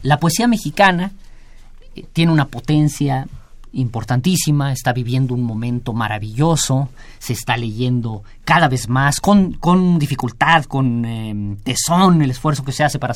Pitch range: 115-150 Hz